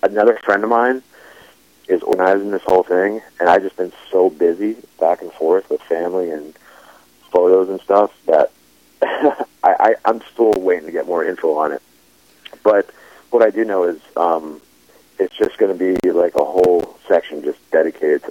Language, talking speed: English, 175 wpm